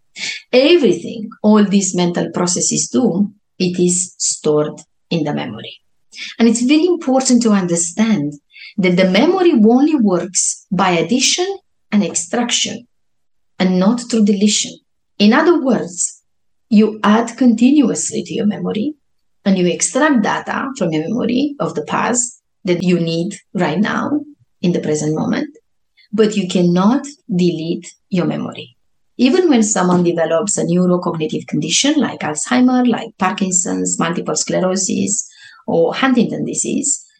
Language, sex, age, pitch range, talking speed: English, female, 30-49, 175-250 Hz, 130 wpm